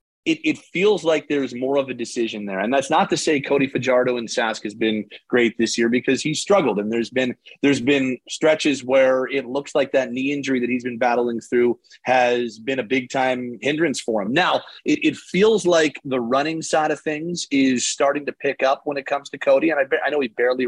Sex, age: male, 30-49